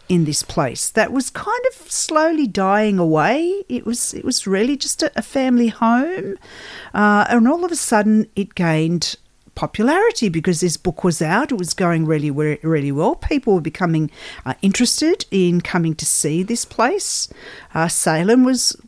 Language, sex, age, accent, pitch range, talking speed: English, female, 50-69, Australian, 155-225 Hz, 175 wpm